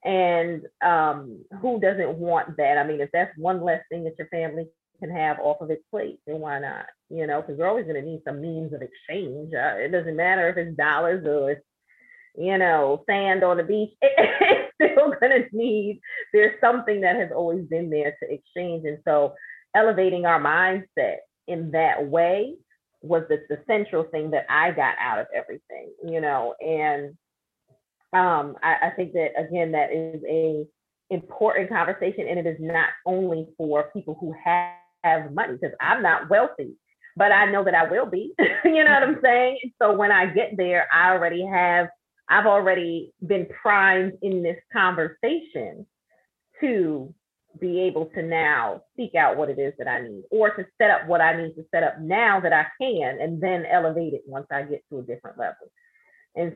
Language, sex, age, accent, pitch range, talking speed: English, female, 30-49, American, 160-205 Hz, 190 wpm